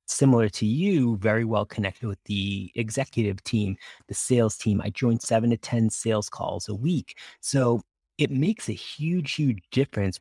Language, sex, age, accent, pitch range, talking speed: English, male, 30-49, American, 95-125 Hz, 170 wpm